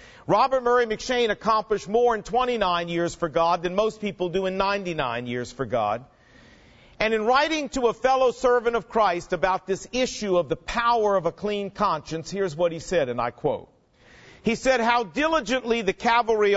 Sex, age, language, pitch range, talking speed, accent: male, 50-69, English, 175-250 Hz, 185 wpm, American